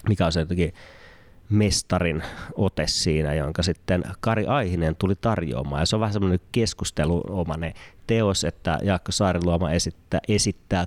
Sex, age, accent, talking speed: male, 30-49, native, 140 wpm